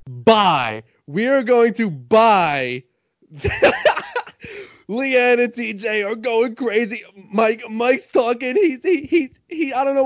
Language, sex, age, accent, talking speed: English, male, 20-39, American, 130 wpm